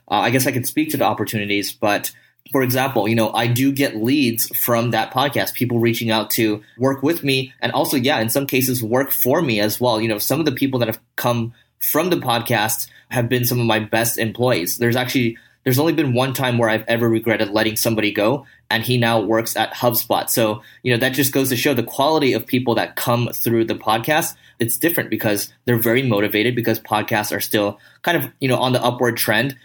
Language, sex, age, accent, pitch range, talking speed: English, male, 20-39, American, 110-125 Hz, 230 wpm